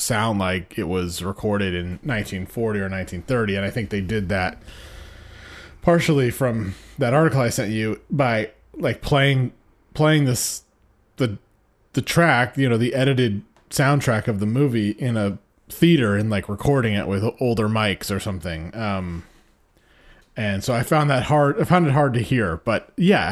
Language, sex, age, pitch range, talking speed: English, male, 30-49, 105-130 Hz, 165 wpm